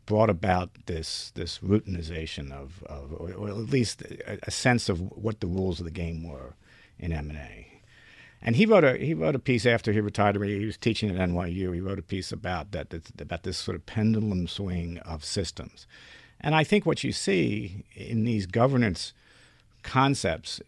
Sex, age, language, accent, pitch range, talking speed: male, 50-69, English, American, 90-115 Hz, 190 wpm